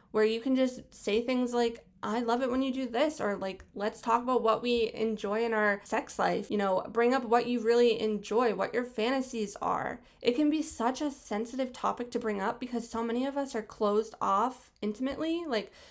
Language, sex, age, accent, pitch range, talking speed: English, female, 20-39, American, 210-255 Hz, 220 wpm